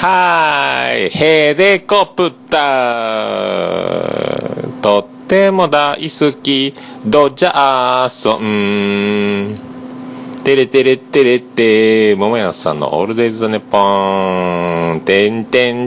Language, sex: Japanese, male